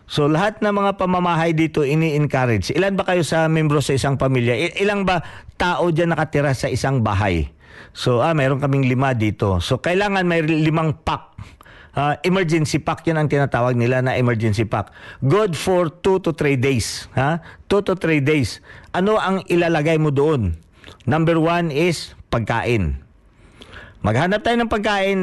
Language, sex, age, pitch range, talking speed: Filipino, male, 50-69, 115-165 Hz, 160 wpm